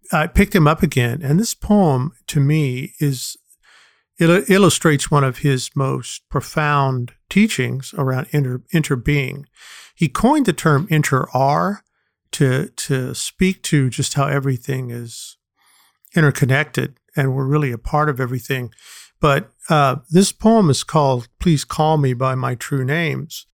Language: English